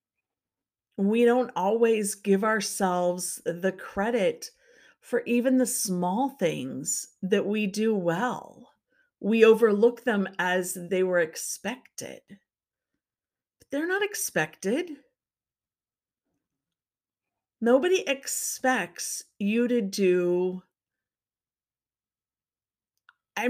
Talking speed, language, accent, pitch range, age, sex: 80 wpm, English, American, 180-240 Hz, 50-69, female